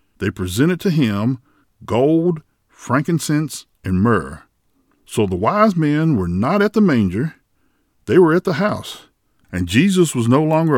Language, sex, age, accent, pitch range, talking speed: English, male, 50-69, American, 105-165 Hz, 150 wpm